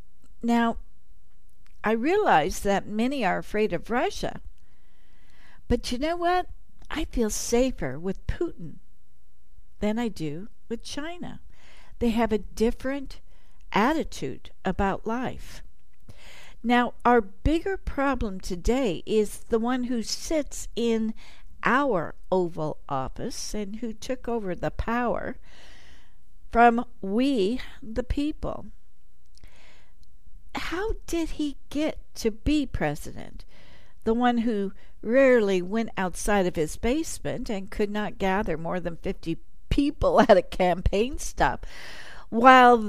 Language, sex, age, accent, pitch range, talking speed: English, female, 60-79, American, 195-260 Hz, 115 wpm